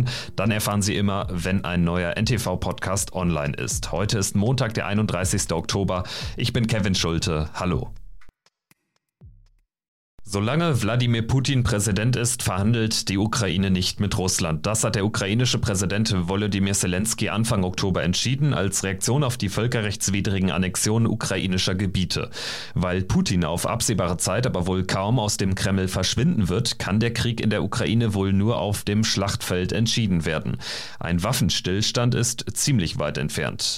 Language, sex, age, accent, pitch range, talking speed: German, male, 40-59, German, 95-115 Hz, 145 wpm